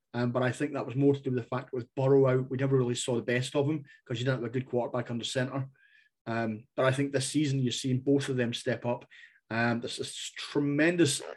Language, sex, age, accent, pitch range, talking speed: English, male, 30-49, British, 125-145 Hz, 255 wpm